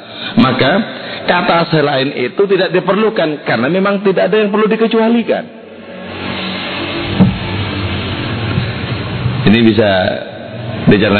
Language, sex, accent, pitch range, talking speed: Indonesian, male, native, 125-180 Hz, 85 wpm